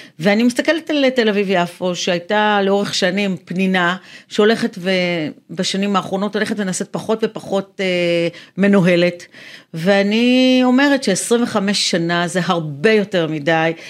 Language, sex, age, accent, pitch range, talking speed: Hebrew, female, 40-59, native, 180-220 Hz, 115 wpm